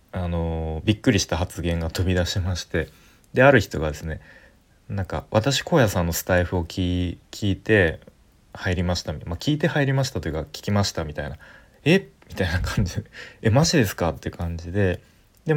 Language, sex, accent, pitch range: Japanese, male, native, 85-120 Hz